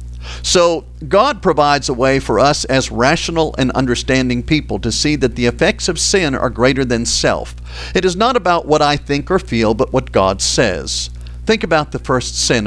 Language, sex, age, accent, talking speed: English, male, 50-69, American, 195 wpm